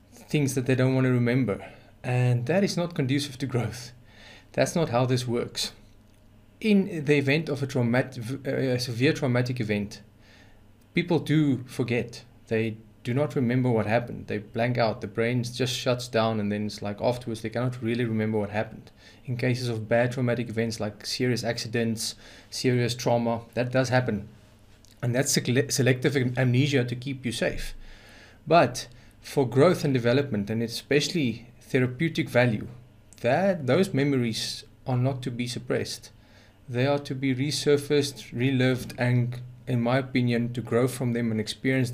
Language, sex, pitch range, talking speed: English, male, 110-135 Hz, 160 wpm